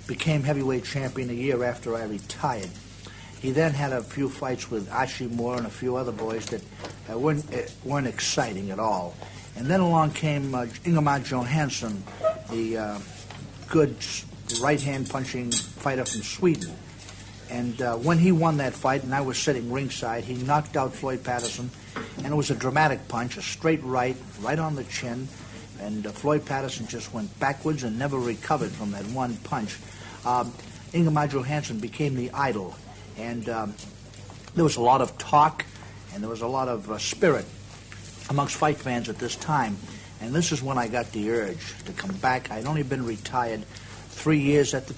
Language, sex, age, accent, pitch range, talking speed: English, male, 60-79, American, 105-140 Hz, 180 wpm